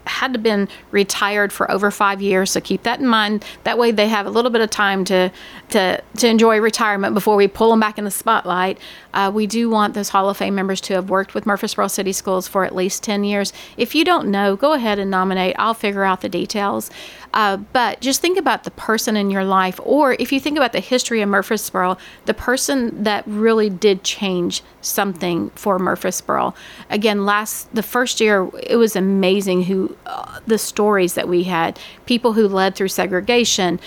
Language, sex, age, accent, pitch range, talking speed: English, female, 40-59, American, 190-225 Hz, 205 wpm